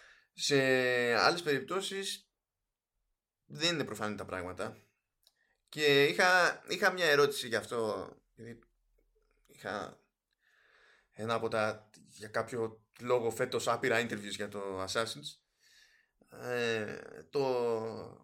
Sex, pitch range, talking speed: male, 110-150 Hz, 100 wpm